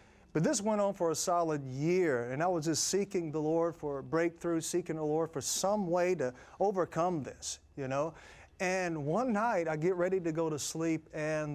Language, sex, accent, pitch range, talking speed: English, male, American, 155-195 Hz, 205 wpm